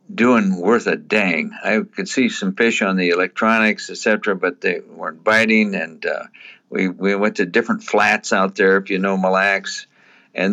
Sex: male